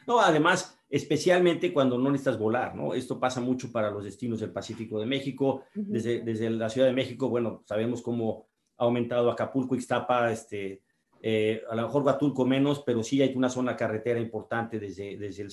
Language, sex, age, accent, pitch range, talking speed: English, male, 40-59, Mexican, 115-140 Hz, 185 wpm